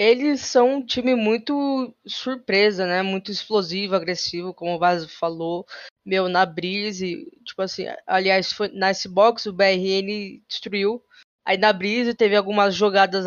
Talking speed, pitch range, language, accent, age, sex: 140 wpm, 185-215 Hz, Portuguese, Brazilian, 20-39, female